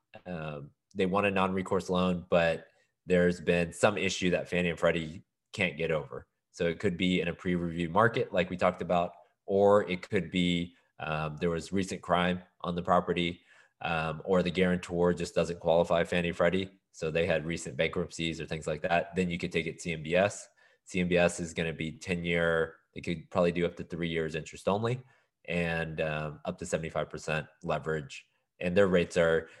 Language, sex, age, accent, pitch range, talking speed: English, male, 20-39, American, 85-95 Hz, 190 wpm